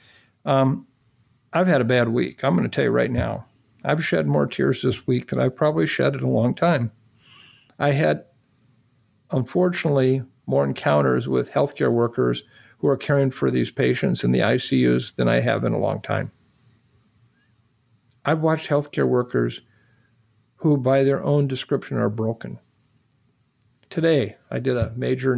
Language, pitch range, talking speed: English, 115-140 Hz, 160 wpm